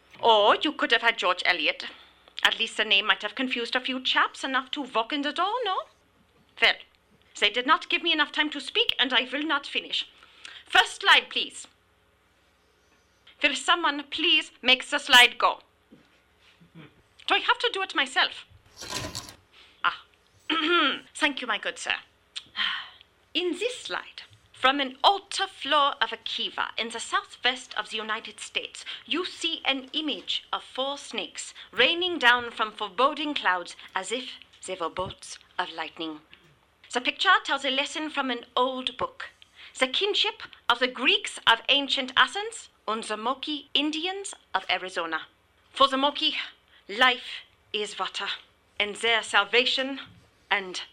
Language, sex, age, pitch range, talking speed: English, female, 30-49, 225-310 Hz, 155 wpm